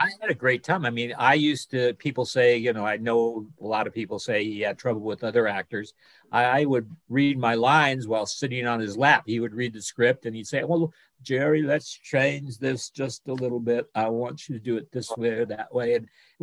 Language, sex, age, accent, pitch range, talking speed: English, male, 50-69, American, 115-145 Hz, 250 wpm